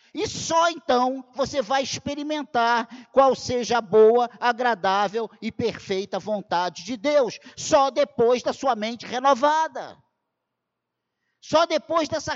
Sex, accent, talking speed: male, Brazilian, 120 wpm